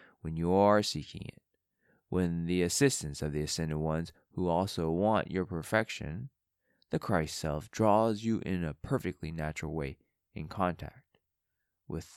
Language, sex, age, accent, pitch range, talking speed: English, male, 20-39, American, 80-115 Hz, 150 wpm